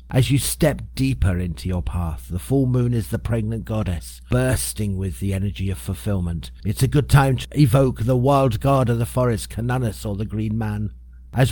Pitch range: 90-135 Hz